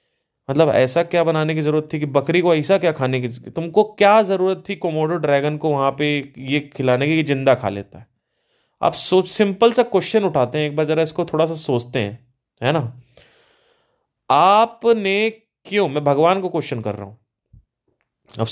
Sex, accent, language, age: male, native, Hindi, 30-49